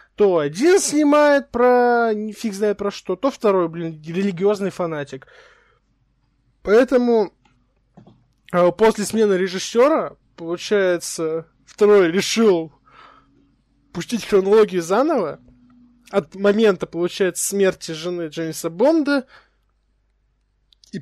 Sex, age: male, 20-39